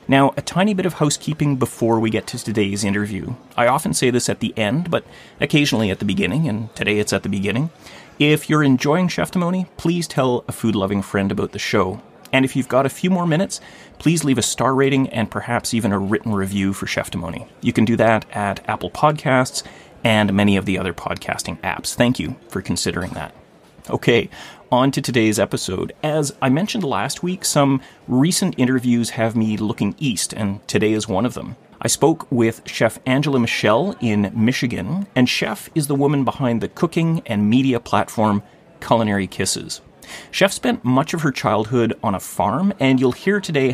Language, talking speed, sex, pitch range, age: English, 195 wpm, male, 105-140 Hz, 30-49